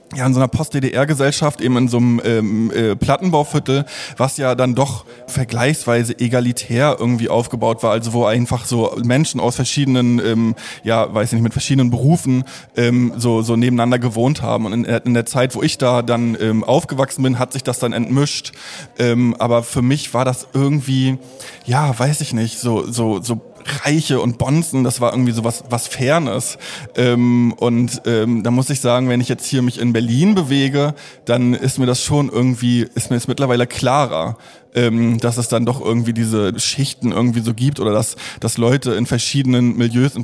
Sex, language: male, German